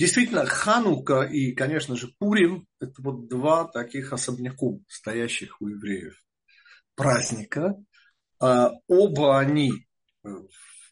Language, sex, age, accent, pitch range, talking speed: Russian, male, 50-69, native, 120-155 Hz, 105 wpm